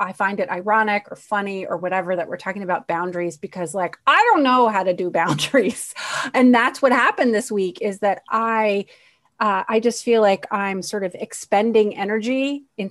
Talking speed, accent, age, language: 195 wpm, American, 30-49, English